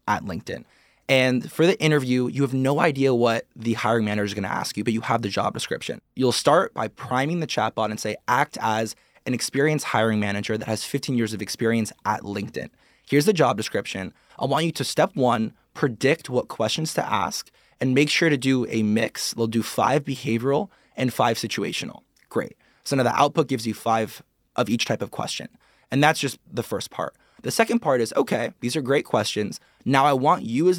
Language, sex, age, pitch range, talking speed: English, male, 20-39, 115-145 Hz, 210 wpm